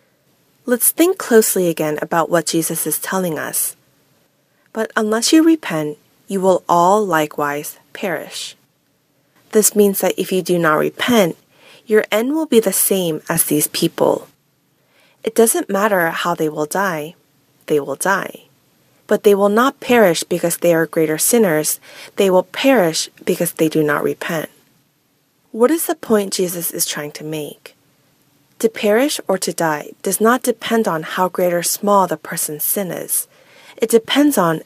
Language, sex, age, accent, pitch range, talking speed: English, female, 20-39, American, 160-220 Hz, 160 wpm